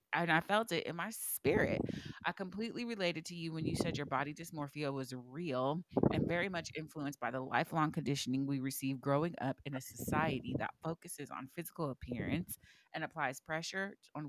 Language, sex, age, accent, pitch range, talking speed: English, female, 30-49, American, 140-175 Hz, 185 wpm